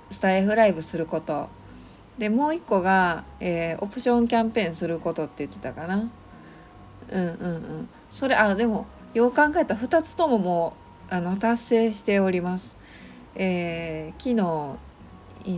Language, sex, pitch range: Japanese, female, 155-215 Hz